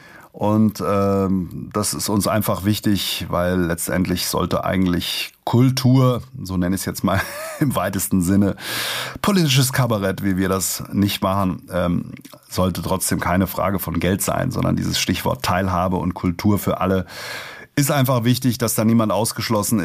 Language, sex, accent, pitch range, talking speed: German, male, German, 95-110 Hz, 155 wpm